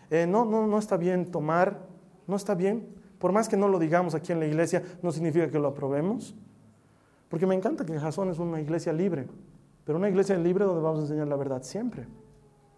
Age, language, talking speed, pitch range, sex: 40-59, Spanish, 210 wpm, 140-205 Hz, male